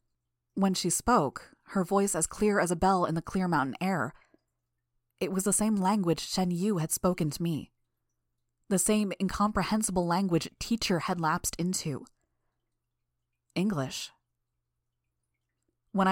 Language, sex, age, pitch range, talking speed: English, female, 20-39, 165-210 Hz, 135 wpm